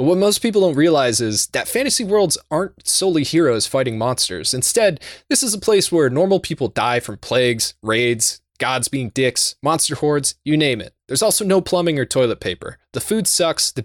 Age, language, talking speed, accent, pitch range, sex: 20-39, English, 200 wpm, American, 110-155 Hz, male